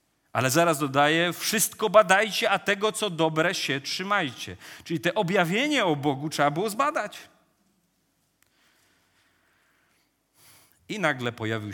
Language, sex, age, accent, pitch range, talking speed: Polish, male, 40-59, native, 125-180 Hz, 110 wpm